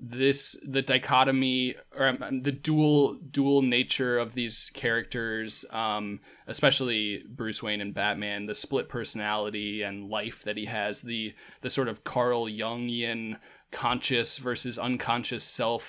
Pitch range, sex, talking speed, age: 110-130 Hz, male, 130 wpm, 20-39